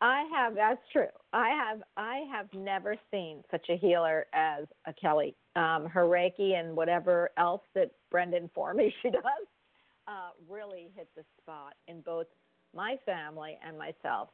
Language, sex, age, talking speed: English, female, 50-69, 165 wpm